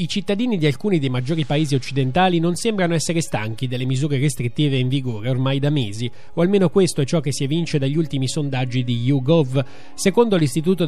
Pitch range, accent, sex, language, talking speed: 145-180 Hz, native, male, Italian, 195 wpm